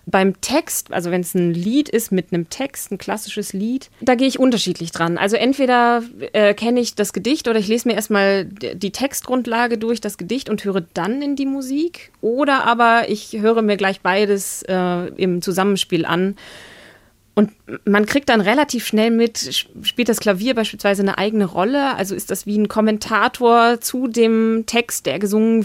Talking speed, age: 180 wpm, 30-49